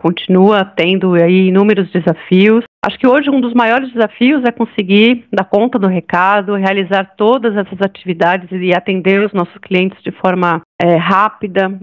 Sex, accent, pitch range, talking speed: female, Brazilian, 180-210 Hz, 145 wpm